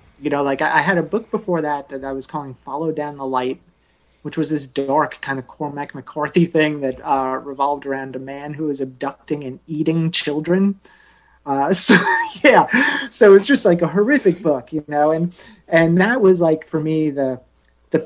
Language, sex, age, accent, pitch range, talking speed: English, male, 30-49, American, 140-175 Hz, 200 wpm